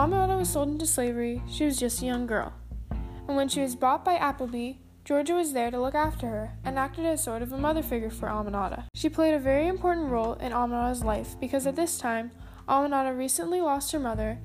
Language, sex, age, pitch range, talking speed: English, female, 10-29, 215-290 Hz, 220 wpm